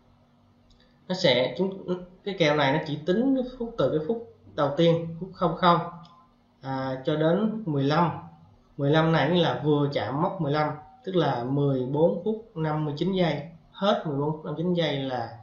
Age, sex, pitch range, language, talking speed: 20-39, male, 125-165 Hz, Vietnamese, 160 wpm